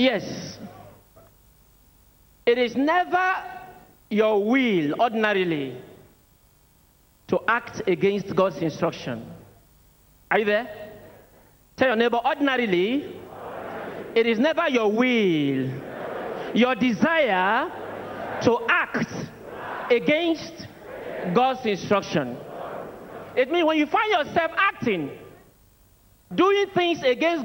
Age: 50-69